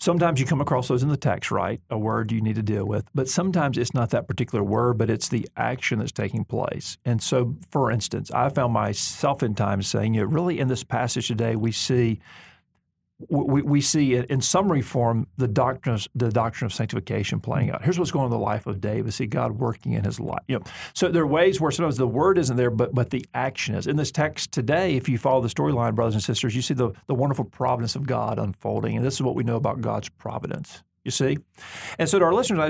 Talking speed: 240 wpm